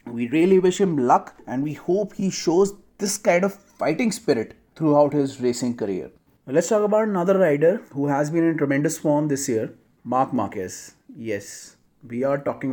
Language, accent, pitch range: Hindi, native, 140-180 Hz